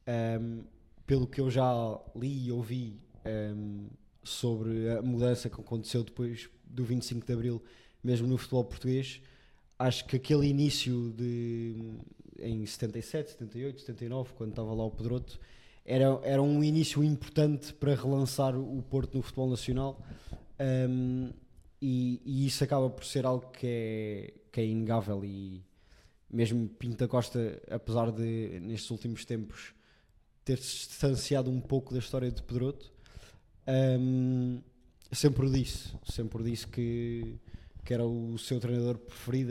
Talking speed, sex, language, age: 140 wpm, male, Portuguese, 20-39